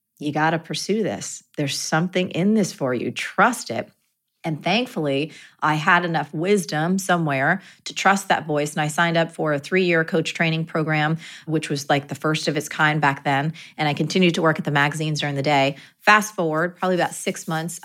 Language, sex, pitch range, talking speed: English, female, 150-195 Hz, 210 wpm